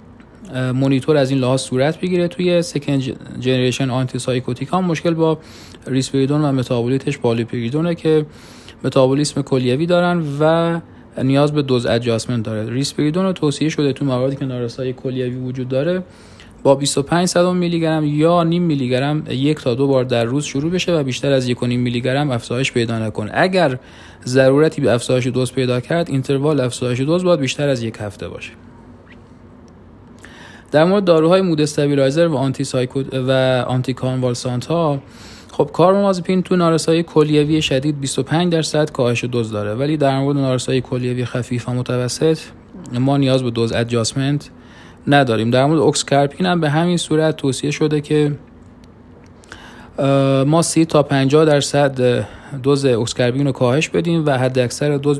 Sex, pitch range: male, 125-150 Hz